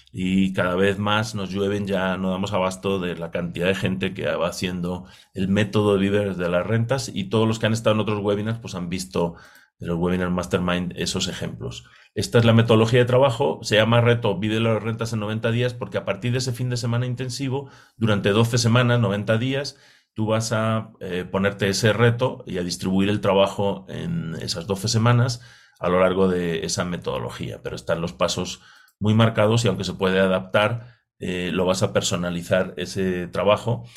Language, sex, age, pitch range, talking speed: Spanish, male, 40-59, 95-120 Hz, 200 wpm